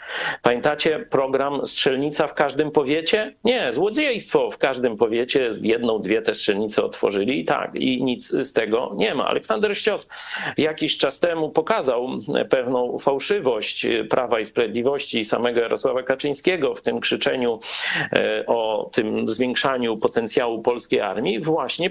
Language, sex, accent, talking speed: Polish, male, native, 130 wpm